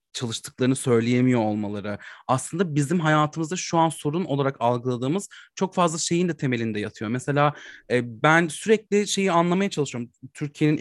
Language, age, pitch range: English, 30-49, 125-165 Hz